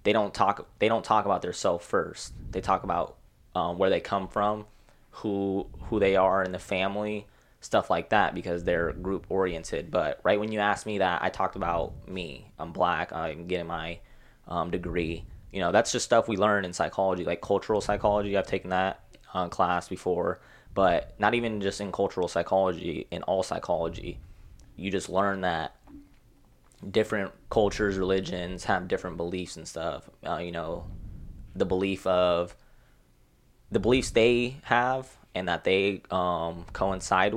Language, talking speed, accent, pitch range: English, 170 wpm, American, 90-100 Hz